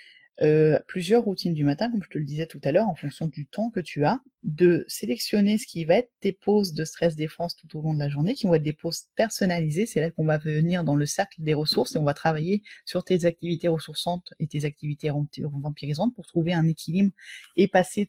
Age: 20-39